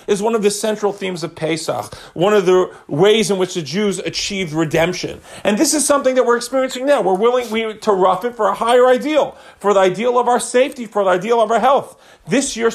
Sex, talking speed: male, 235 wpm